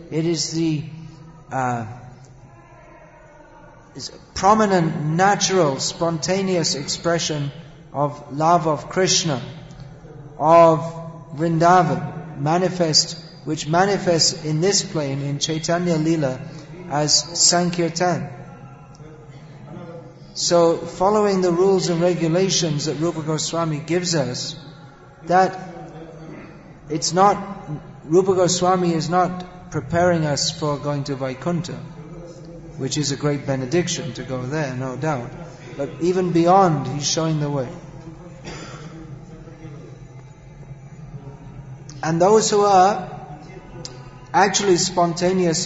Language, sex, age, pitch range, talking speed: English, male, 40-59, 150-175 Hz, 95 wpm